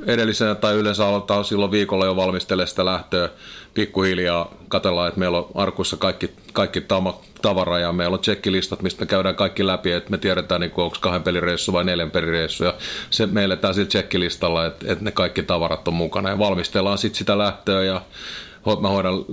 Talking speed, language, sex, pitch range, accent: 180 wpm, Finnish, male, 90-100 Hz, native